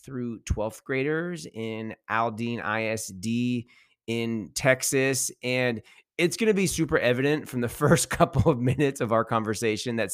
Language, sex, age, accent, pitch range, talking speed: English, male, 30-49, American, 110-140 Hz, 150 wpm